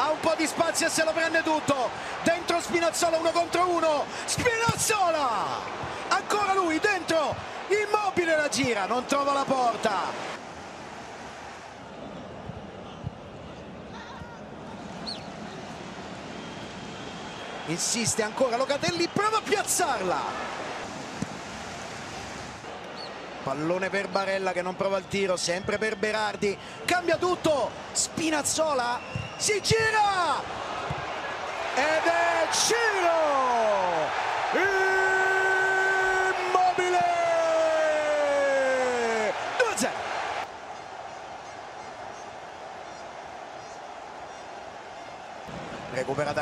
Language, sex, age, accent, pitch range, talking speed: Italian, male, 40-59, native, 225-370 Hz, 70 wpm